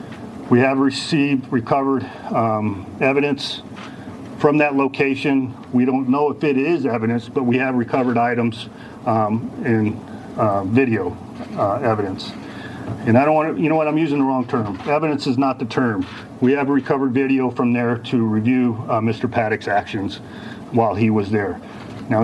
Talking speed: 165 wpm